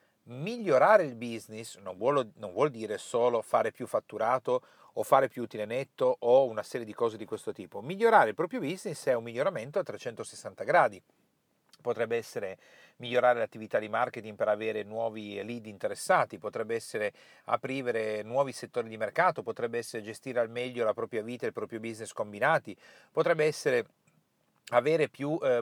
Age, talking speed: 40-59, 165 wpm